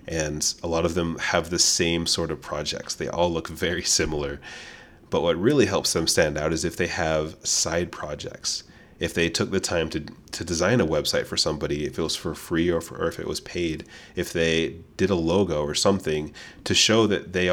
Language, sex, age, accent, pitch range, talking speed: English, male, 30-49, American, 75-85 Hz, 220 wpm